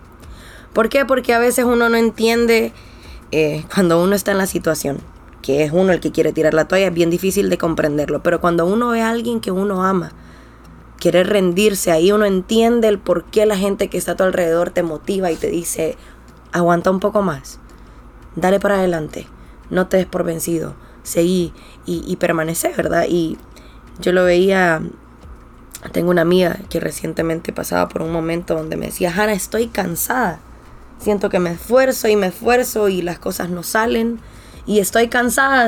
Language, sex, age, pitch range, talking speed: Spanish, female, 20-39, 170-230 Hz, 185 wpm